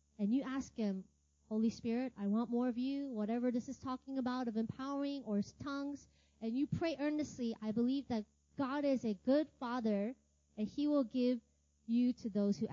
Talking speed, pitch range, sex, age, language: 195 wpm, 215-300 Hz, female, 20-39, English